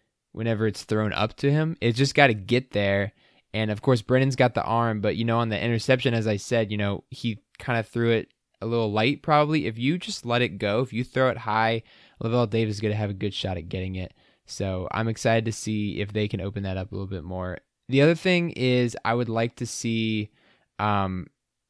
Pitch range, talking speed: 100-115 Hz, 240 wpm